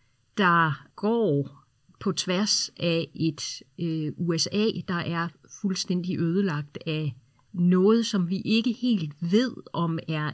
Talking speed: 115 wpm